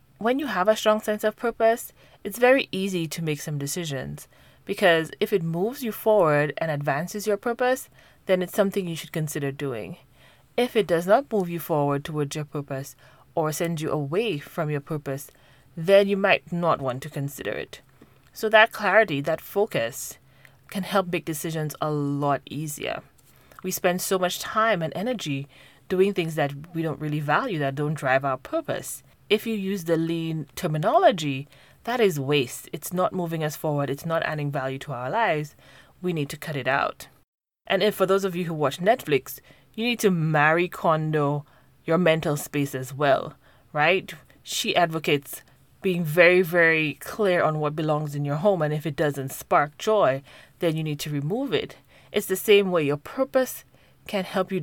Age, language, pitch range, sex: 30-49, English, 145-195 Hz, female